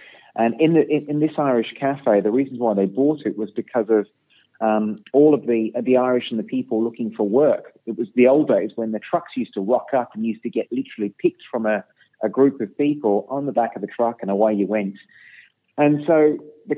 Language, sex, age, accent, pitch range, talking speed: English, male, 30-49, British, 105-130 Hz, 235 wpm